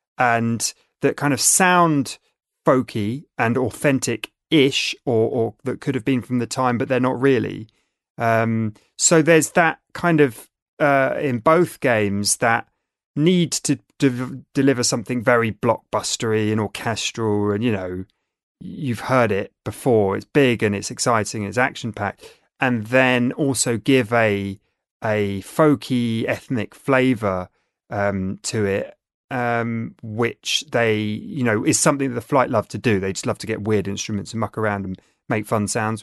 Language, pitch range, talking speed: English, 110-140 Hz, 160 wpm